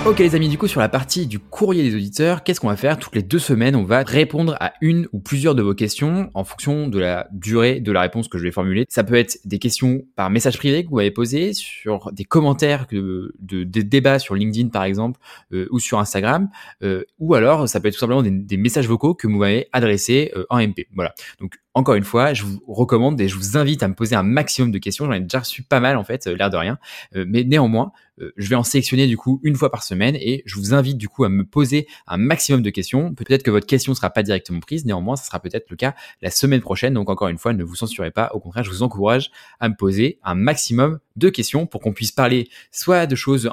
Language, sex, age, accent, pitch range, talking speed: French, male, 20-39, French, 105-135 Hz, 260 wpm